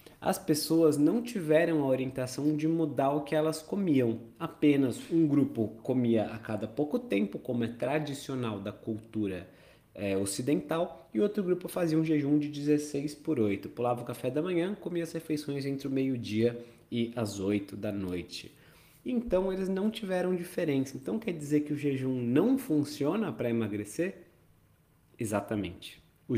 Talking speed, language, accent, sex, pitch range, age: 155 wpm, Portuguese, Brazilian, male, 120-165 Hz, 20-39